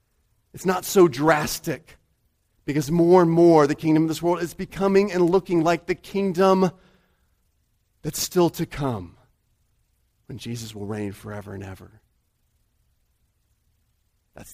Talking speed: 130 wpm